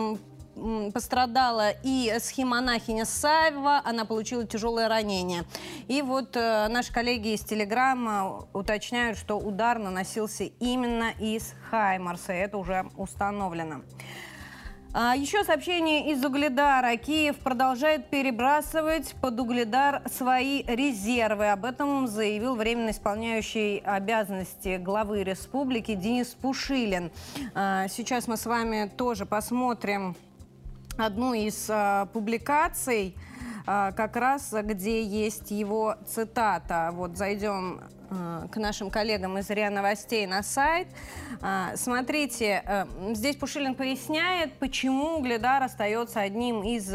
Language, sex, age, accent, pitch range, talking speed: Russian, female, 30-49, native, 205-265 Hz, 105 wpm